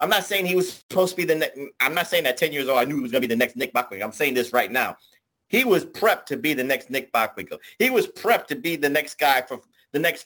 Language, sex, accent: English, male, American